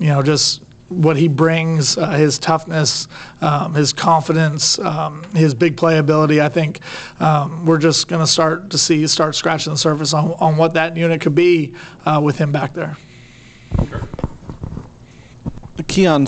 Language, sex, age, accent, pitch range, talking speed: English, male, 30-49, American, 140-165 Hz, 160 wpm